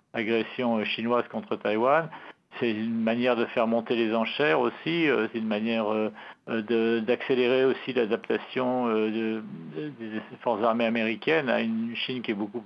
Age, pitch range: 60-79, 105-120 Hz